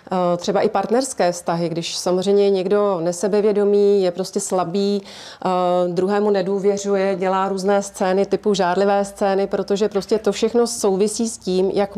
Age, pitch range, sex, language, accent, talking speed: 30-49, 195-230 Hz, female, Czech, native, 135 wpm